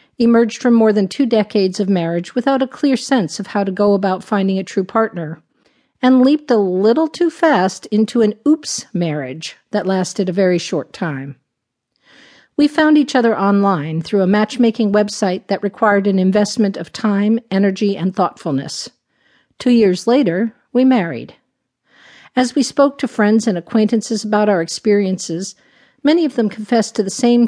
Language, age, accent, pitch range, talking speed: English, 50-69, American, 190-235 Hz, 170 wpm